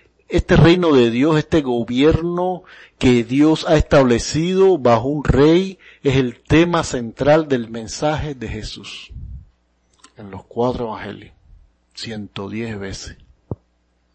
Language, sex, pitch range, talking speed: Spanish, male, 100-140 Hz, 115 wpm